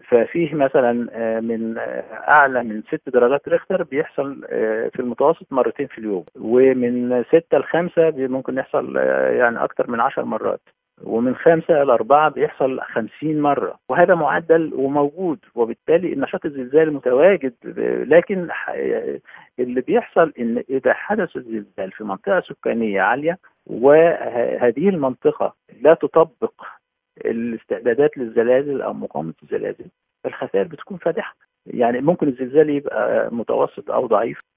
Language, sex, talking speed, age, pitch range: Arabic, male, 120 wpm, 50-69, 125-175 Hz